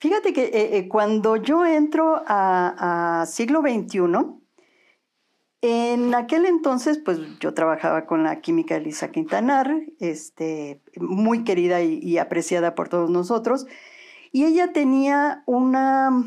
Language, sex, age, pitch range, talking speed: Spanish, female, 50-69, 190-265 Hz, 130 wpm